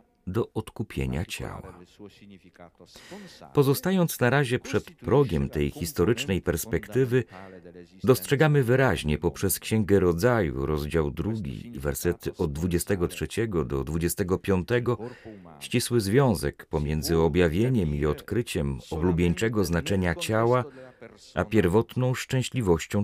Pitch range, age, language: 85-125 Hz, 40-59, Polish